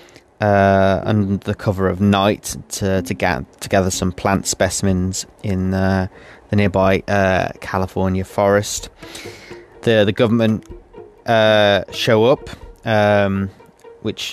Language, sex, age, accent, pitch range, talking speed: English, male, 20-39, British, 95-110 Hz, 120 wpm